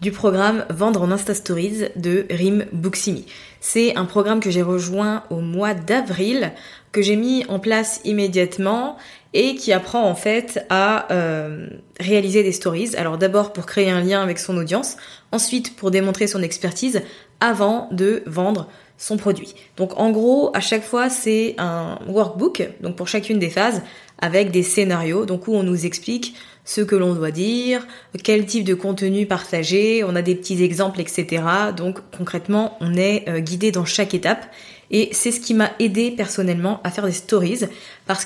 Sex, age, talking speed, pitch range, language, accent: female, 20-39, 175 wpm, 180-215 Hz, French, French